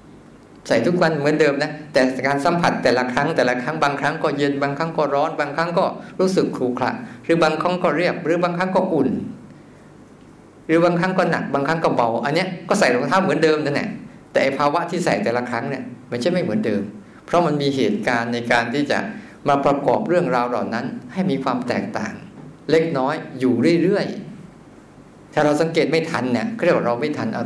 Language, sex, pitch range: Thai, male, 130-175 Hz